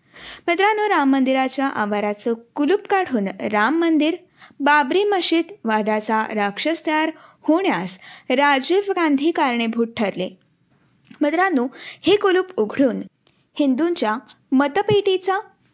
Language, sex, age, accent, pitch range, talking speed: Marathi, female, 20-39, native, 250-340 Hz, 90 wpm